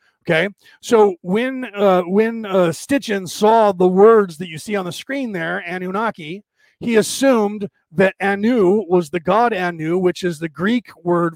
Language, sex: English, male